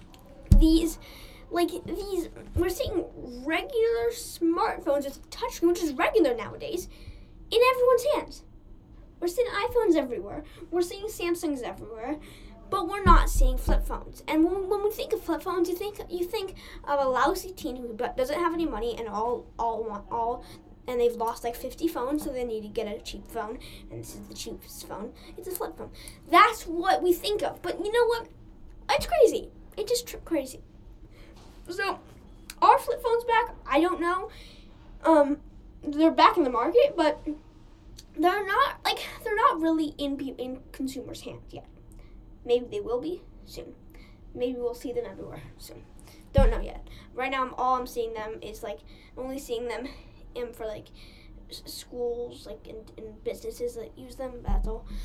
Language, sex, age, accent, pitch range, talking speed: English, female, 10-29, American, 245-405 Hz, 175 wpm